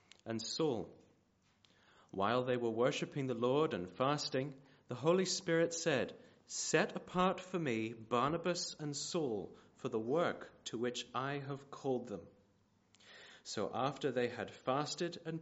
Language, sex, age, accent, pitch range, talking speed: English, male, 30-49, British, 110-135 Hz, 140 wpm